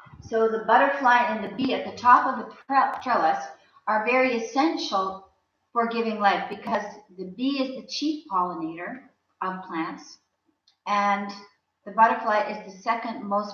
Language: English